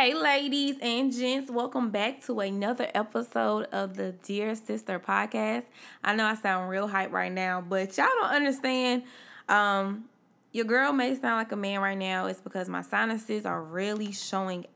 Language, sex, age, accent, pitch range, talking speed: English, female, 20-39, American, 195-240 Hz, 175 wpm